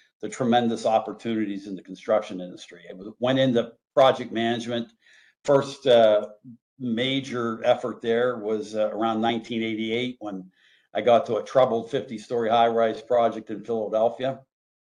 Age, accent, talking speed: 50-69, American, 135 wpm